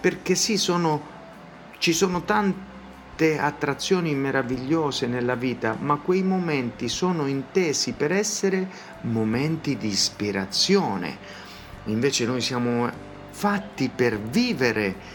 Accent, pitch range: native, 105-150 Hz